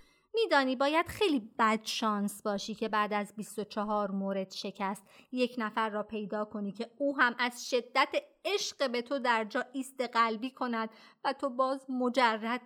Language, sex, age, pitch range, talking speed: Persian, female, 30-49, 205-265 Hz, 155 wpm